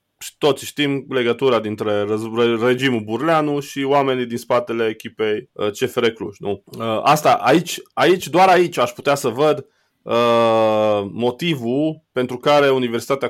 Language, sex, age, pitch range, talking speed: Romanian, male, 20-39, 110-145 Hz, 130 wpm